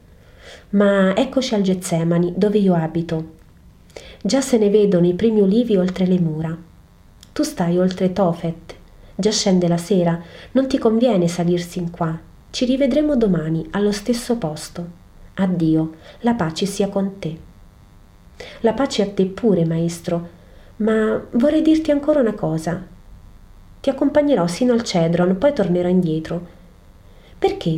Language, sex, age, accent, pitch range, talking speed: Italian, female, 30-49, native, 170-230 Hz, 140 wpm